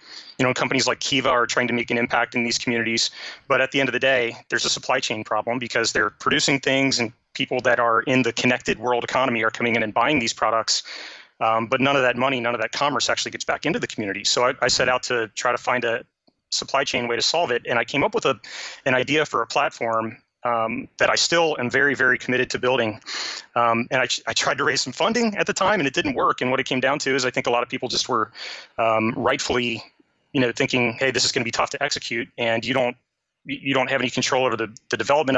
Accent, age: American, 30-49